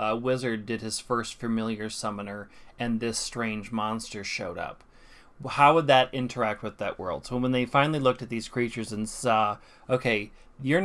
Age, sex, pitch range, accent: 30-49, male, 110-125 Hz, American